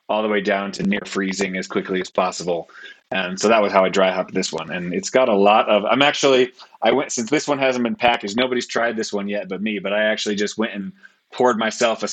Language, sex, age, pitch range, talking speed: English, male, 30-49, 100-125 Hz, 260 wpm